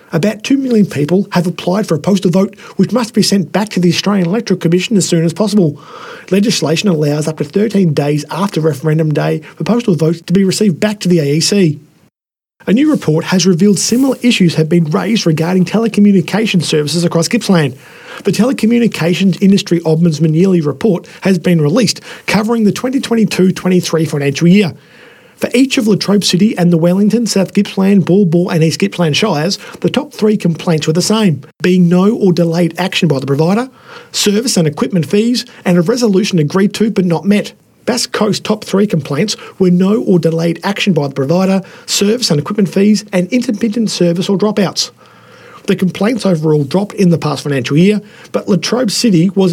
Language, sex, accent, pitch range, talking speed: English, male, Australian, 170-210 Hz, 180 wpm